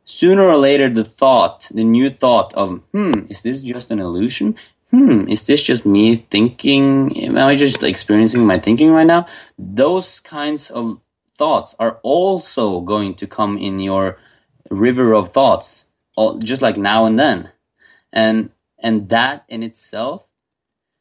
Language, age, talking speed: English, 20-39, 150 wpm